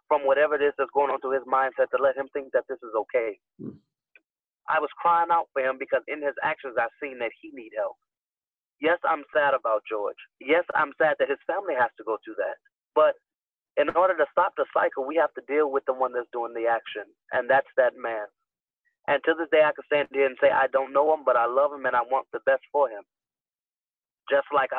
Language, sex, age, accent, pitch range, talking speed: English, male, 30-49, American, 135-170 Hz, 240 wpm